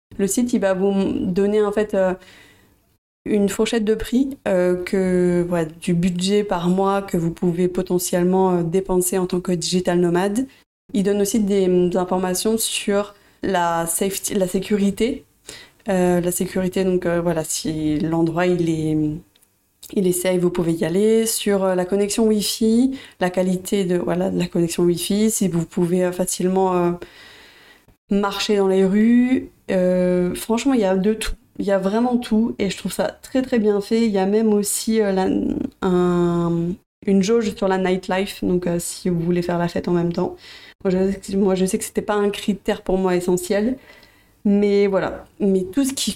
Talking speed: 190 wpm